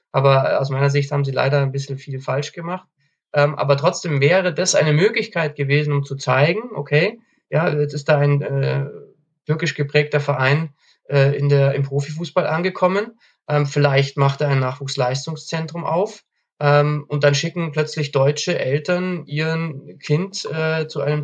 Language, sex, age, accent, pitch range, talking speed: German, male, 20-39, German, 145-170 Hz, 165 wpm